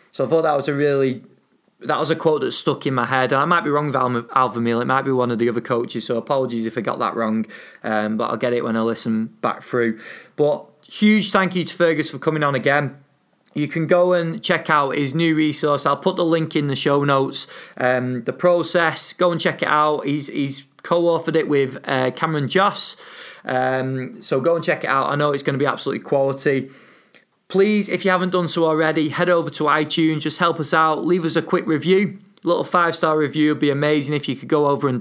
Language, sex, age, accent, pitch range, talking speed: English, male, 30-49, British, 135-165 Hz, 240 wpm